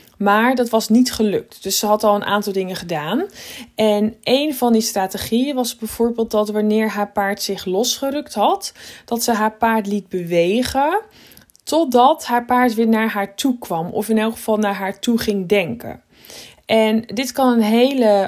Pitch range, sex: 205-245 Hz, female